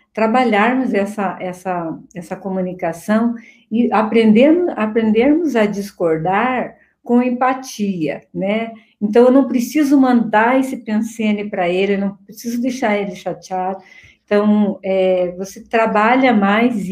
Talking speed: 115 wpm